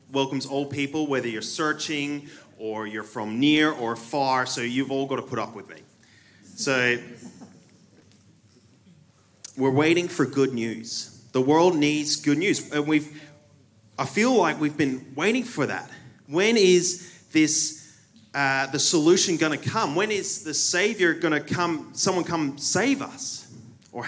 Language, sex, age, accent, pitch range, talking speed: English, male, 30-49, Australian, 115-165 Hz, 155 wpm